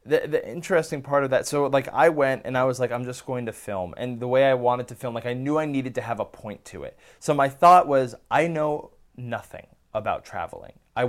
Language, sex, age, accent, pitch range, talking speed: English, male, 20-39, American, 105-130 Hz, 255 wpm